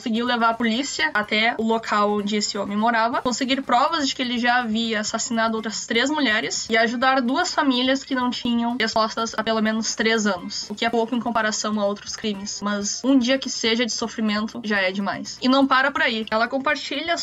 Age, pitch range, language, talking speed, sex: 10-29, 220-255 Hz, Portuguese, 215 wpm, female